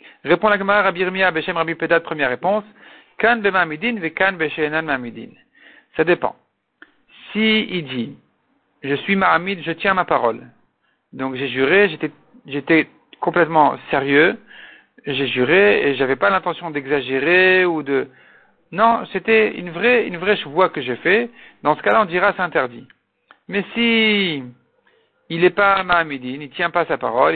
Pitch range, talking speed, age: 150-195 Hz, 150 wpm, 50-69